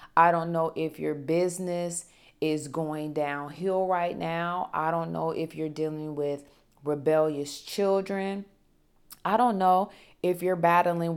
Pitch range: 165-210 Hz